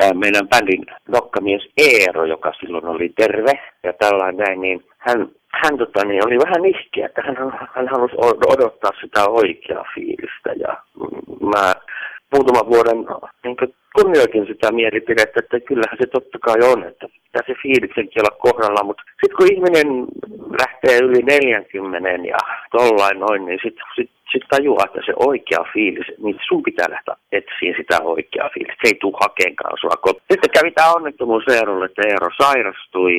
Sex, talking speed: male, 150 wpm